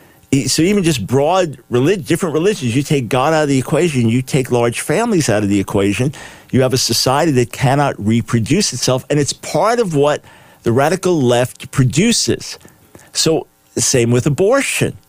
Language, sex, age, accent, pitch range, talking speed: English, male, 50-69, American, 115-155 Hz, 170 wpm